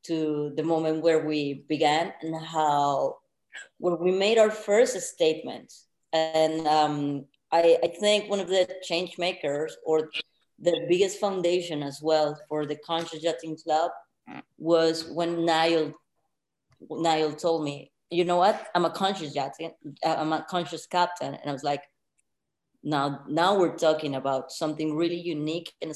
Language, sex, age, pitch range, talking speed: English, female, 20-39, 150-175 Hz, 150 wpm